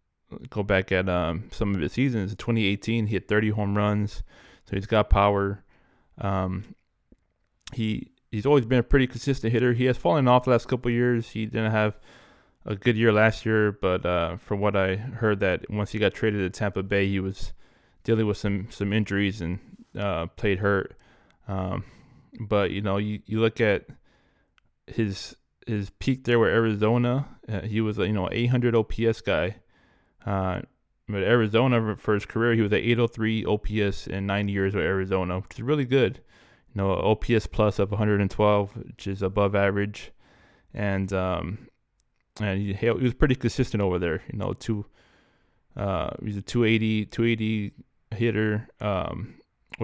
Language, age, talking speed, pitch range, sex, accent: English, 20-39, 170 wpm, 100-115 Hz, male, American